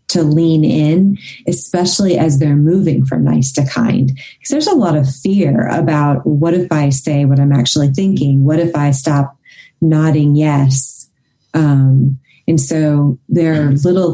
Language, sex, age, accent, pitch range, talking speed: English, female, 30-49, American, 140-170 Hz, 160 wpm